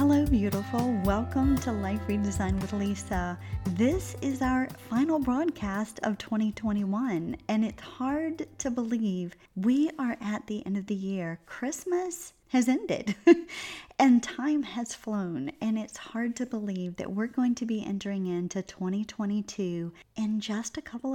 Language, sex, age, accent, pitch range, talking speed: English, female, 40-59, American, 190-240 Hz, 150 wpm